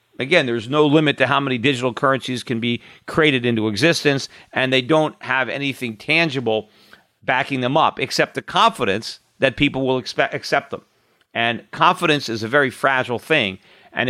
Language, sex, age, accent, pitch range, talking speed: English, male, 50-69, American, 120-155 Hz, 165 wpm